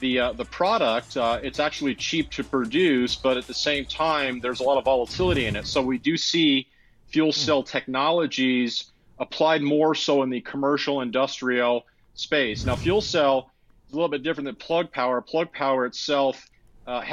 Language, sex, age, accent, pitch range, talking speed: English, male, 40-59, American, 125-150 Hz, 180 wpm